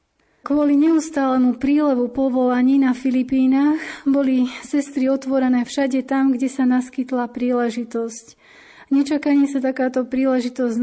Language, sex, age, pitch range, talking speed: Slovak, female, 30-49, 245-270 Hz, 105 wpm